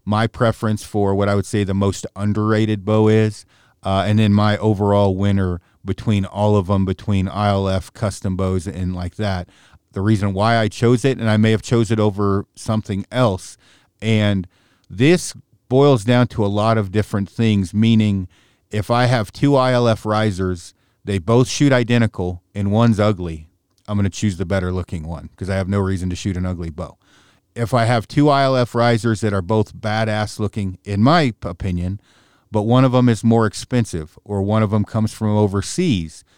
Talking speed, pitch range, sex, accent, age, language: 185 wpm, 95-115 Hz, male, American, 40-59, English